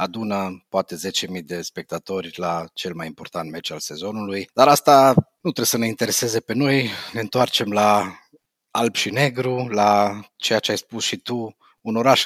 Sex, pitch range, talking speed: male, 100-120 Hz, 175 wpm